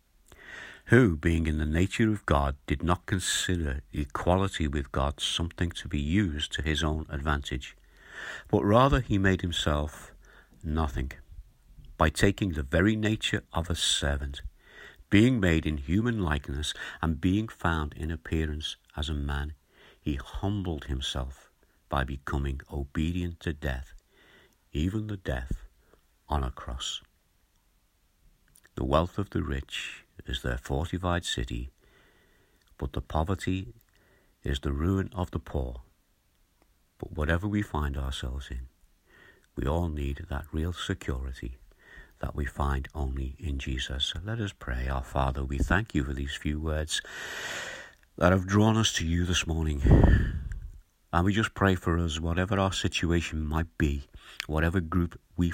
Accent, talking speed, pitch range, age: British, 145 wpm, 70-90 Hz, 60-79